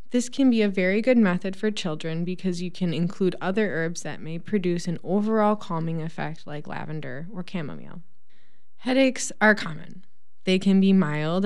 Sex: female